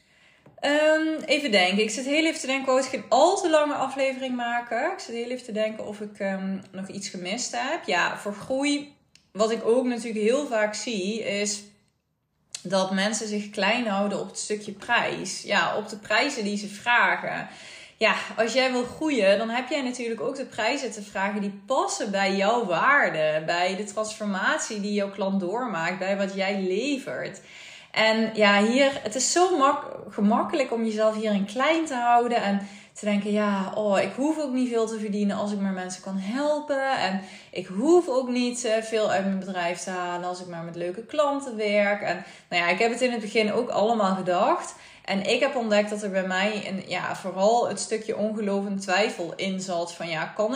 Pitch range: 195-245 Hz